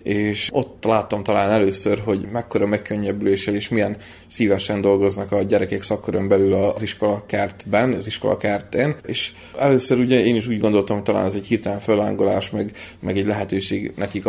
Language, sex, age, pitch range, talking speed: Hungarian, male, 20-39, 100-110 Hz, 170 wpm